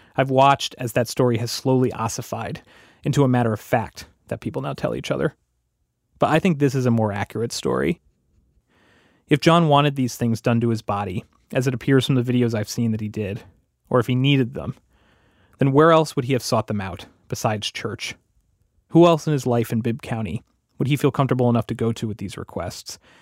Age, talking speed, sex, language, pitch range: 30-49, 215 wpm, male, English, 110-135 Hz